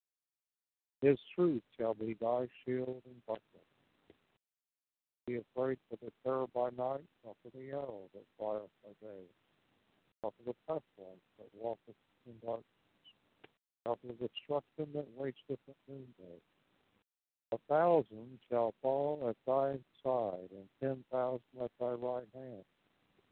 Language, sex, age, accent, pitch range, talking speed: English, male, 60-79, American, 110-135 Hz, 135 wpm